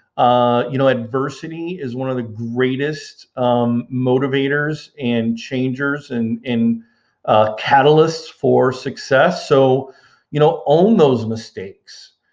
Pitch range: 120-140 Hz